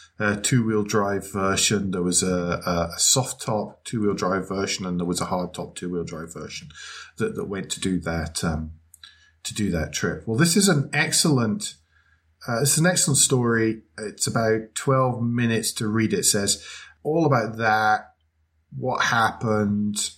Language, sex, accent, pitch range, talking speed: English, male, British, 95-130 Hz, 170 wpm